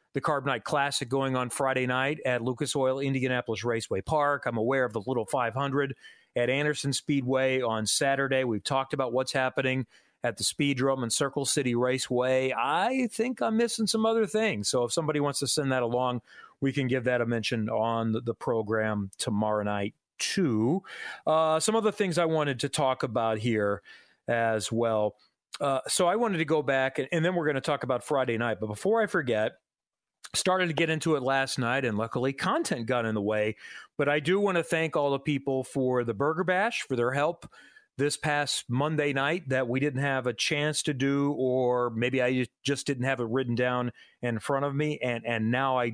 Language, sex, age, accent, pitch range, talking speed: English, male, 40-59, American, 120-150 Hz, 205 wpm